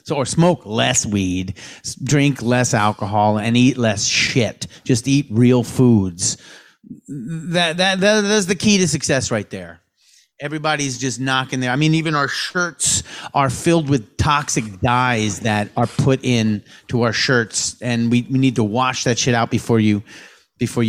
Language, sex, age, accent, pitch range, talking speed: English, male, 40-59, American, 115-155 Hz, 165 wpm